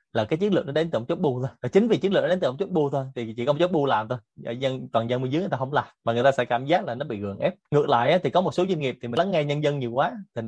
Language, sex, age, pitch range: Vietnamese, male, 20-39, 115-155 Hz